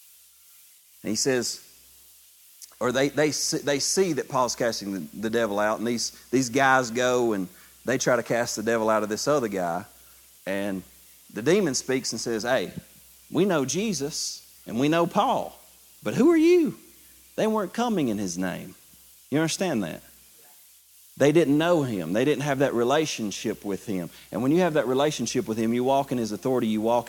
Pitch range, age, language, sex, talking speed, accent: 115-155 Hz, 40-59, English, male, 185 wpm, American